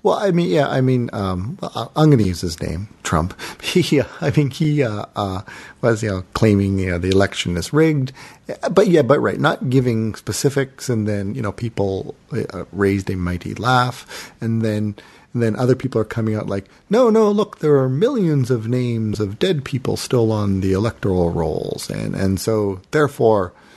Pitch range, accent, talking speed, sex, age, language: 95-130 Hz, American, 195 wpm, male, 40-59, English